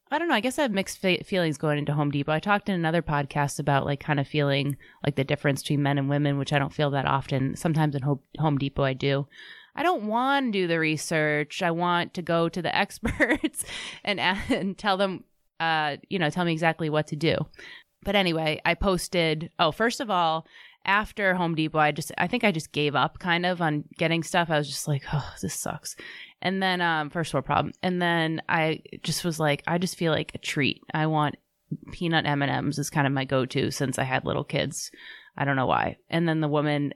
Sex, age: female, 20-39